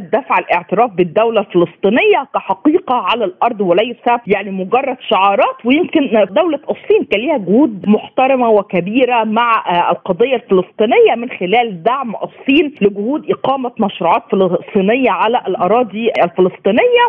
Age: 40-59